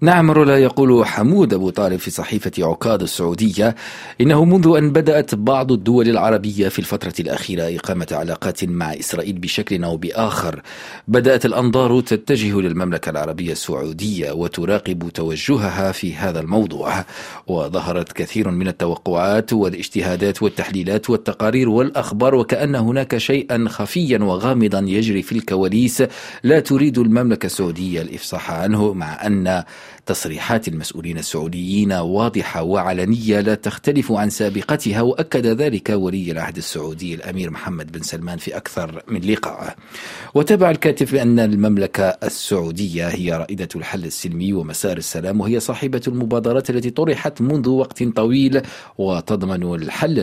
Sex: male